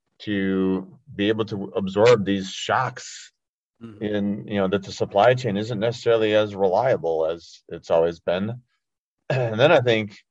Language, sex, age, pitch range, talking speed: English, male, 30-49, 95-110 Hz, 150 wpm